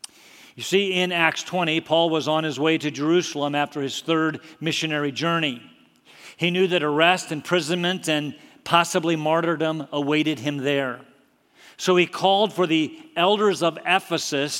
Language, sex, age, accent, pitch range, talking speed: English, male, 50-69, American, 155-195 Hz, 150 wpm